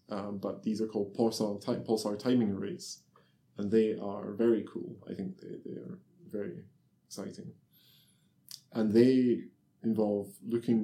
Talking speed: 145 wpm